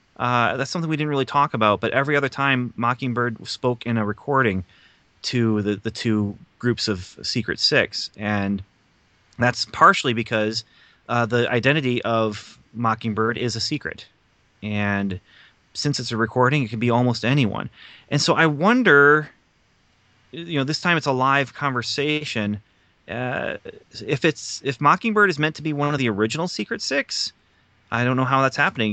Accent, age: American, 30-49